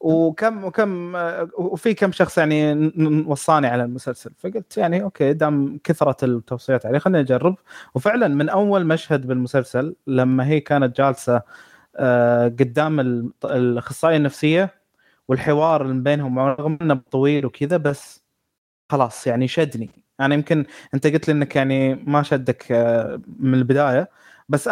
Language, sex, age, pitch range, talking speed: Arabic, male, 20-39, 135-170 Hz, 130 wpm